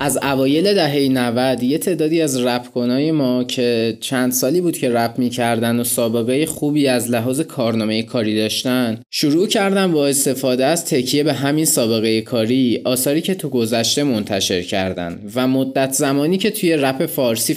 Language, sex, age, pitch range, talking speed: Persian, male, 20-39, 120-155 Hz, 160 wpm